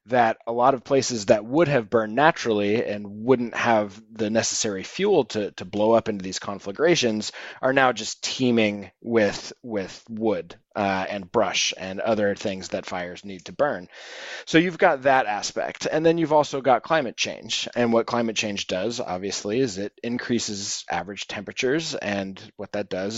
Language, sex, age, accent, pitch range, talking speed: English, male, 30-49, American, 100-125 Hz, 175 wpm